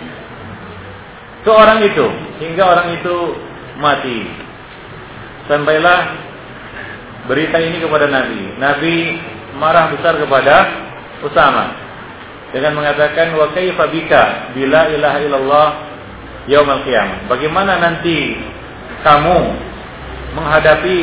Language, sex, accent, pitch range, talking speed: English, male, Indonesian, 150-185 Hz, 75 wpm